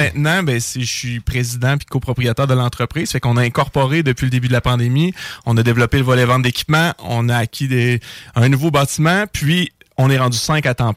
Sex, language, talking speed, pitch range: male, French, 225 wpm, 120-145 Hz